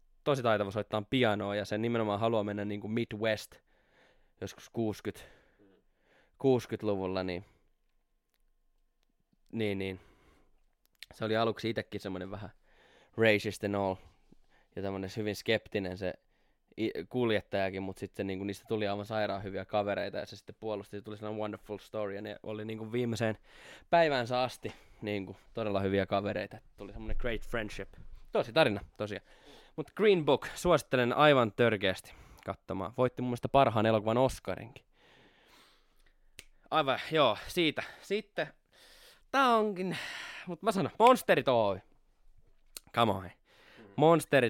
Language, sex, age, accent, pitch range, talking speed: Finnish, male, 20-39, native, 100-120 Hz, 130 wpm